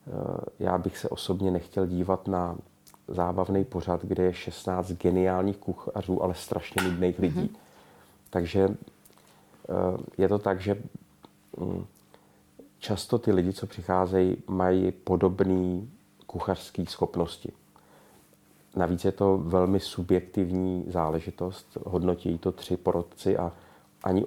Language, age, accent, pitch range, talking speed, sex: Czech, 30-49, native, 90-100 Hz, 110 wpm, male